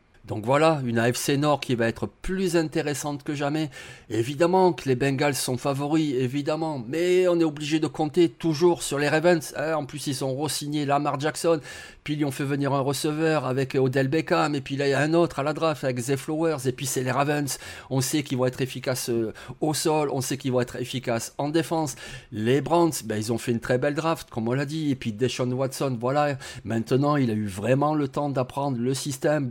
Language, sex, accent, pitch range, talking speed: French, male, French, 125-155 Hz, 225 wpm